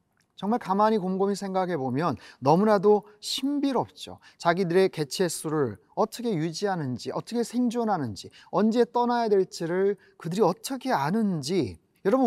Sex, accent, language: male, native, Korean